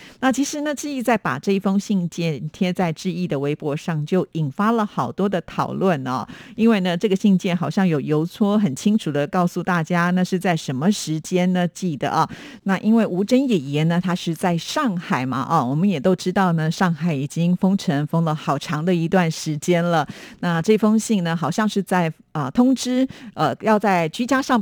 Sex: female